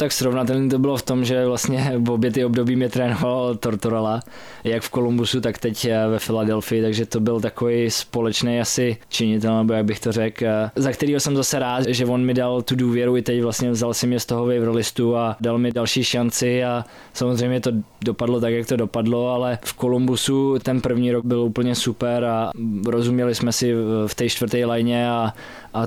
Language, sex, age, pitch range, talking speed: Czech, male, 20-39, 115-125 Hz, 195 wpm